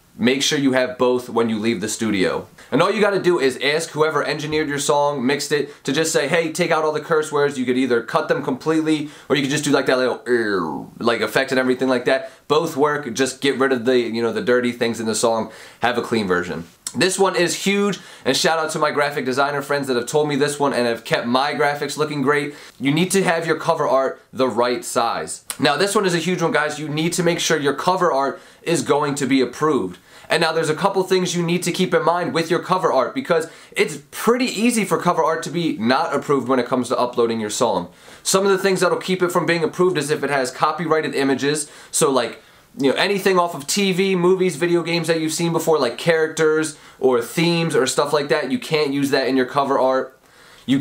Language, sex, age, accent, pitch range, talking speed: English, male, 20-39, American, 135-170 Hz, 250 wpm